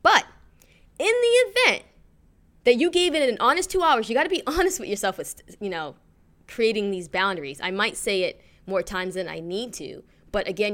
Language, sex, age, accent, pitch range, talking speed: English, female, 20-39, American, 175-245 Hz, 205 wpm